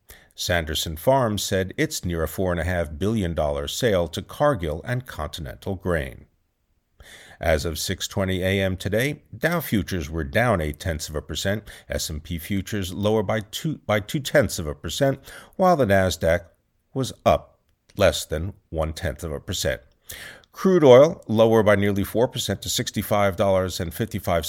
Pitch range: 85-115 Hz